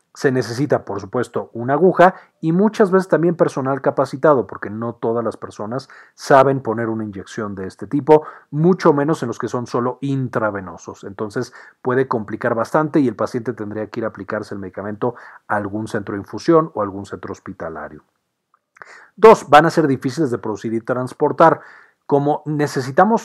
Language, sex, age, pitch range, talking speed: Spanish, male, 40-59, 110-155 Hz, 170 wpm